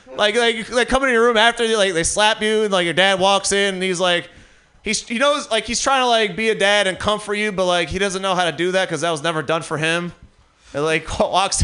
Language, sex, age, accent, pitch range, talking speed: English, male, 30-49, American, 185-255 Hz, 280 wpm